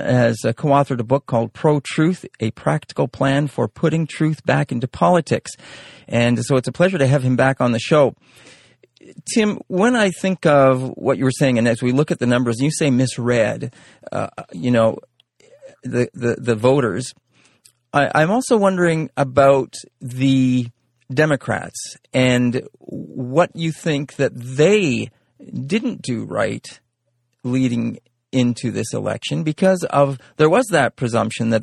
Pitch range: 120-155 Hz